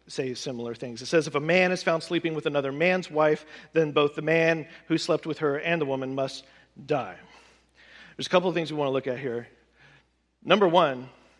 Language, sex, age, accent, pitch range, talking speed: English, male, 50-69, American, 125-165 Hz, 215 wpm